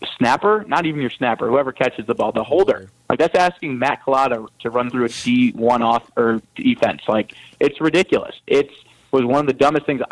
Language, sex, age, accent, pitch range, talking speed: English, male, 30-49, American, 120-140 Hz, 200 wpm